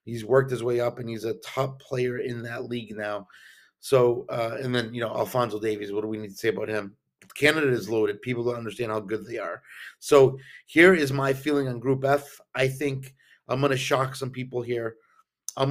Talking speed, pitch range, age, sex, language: 220 wpm, 115-140 Hz, 30-49, male, English